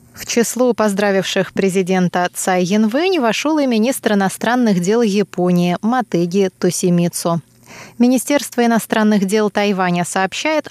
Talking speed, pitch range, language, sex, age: 105 wpm, 180-245 Hz, Russian, female, 20-39